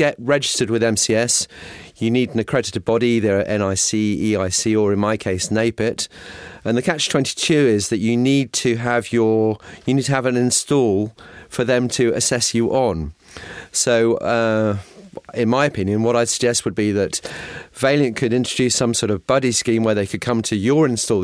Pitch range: 105-125 Hz